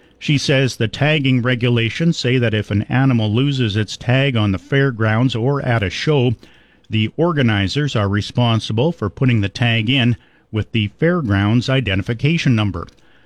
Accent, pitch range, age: American, 105-135 Hz, 50-69